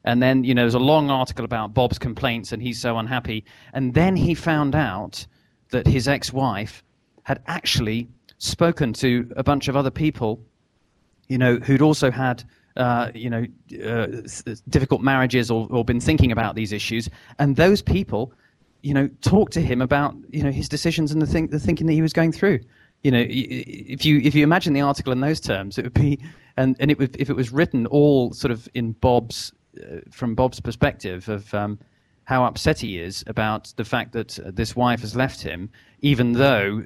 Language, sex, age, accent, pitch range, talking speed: English, male, 30-49, British, 115-140 Hz, 200 wpm